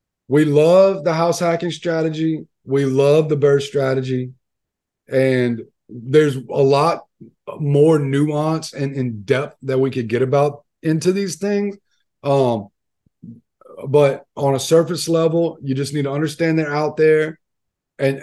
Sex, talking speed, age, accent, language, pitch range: male, 140 wpm, 30-49, American, English, 120-160 Hz